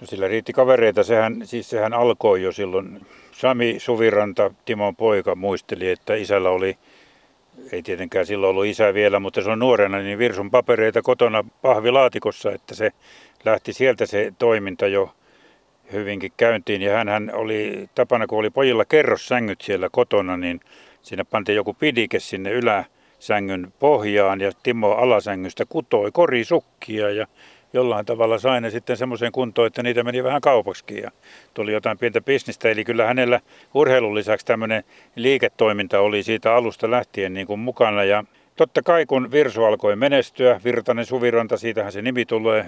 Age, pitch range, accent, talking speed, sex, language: 60-79, 105-130 Hz, native, 155 wpm, male, Finnish